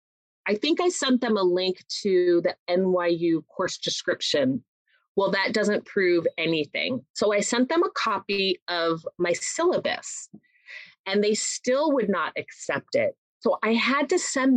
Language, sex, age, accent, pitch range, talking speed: English, female, 30-49, American, 165-250 Hz, 155 wpm